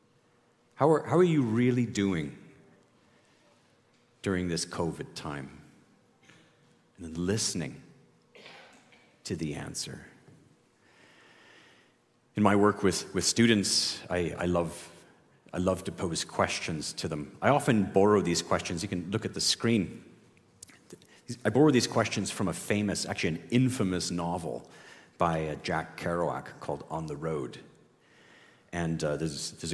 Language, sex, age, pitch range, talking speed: English, male, 40-59, 80-105 Hz, 135 wpm